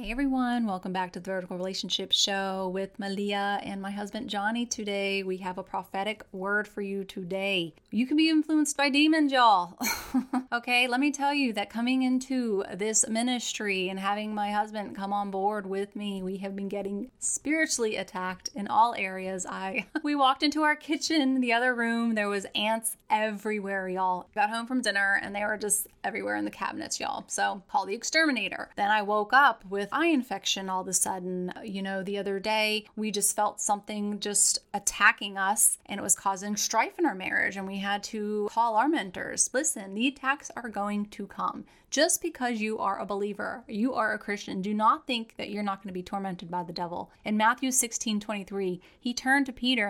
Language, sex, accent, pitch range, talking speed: English, female, American, 195-245 Hz, 200 wpm